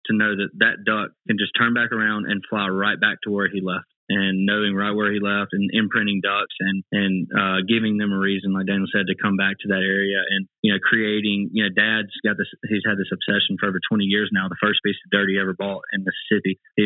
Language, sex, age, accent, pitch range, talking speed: English, male, 20-39, American, 95-105 Hz, 255 wpm